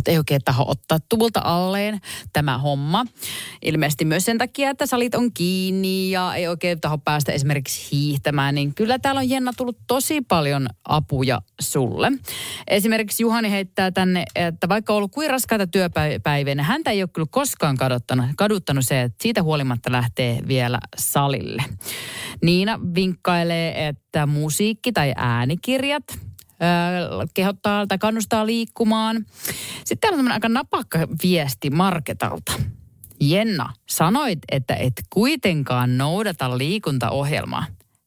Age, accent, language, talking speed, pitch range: 30-49, native, Finnish, 130 wpm, 130-200 Hz